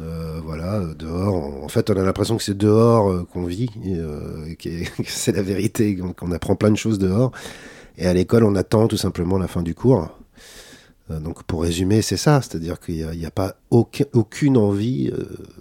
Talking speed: 180 wpm